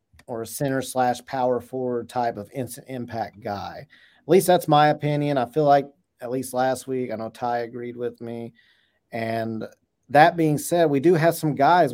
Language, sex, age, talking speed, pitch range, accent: English, male, 40-59, 190 wpm, 125-150 Hz, American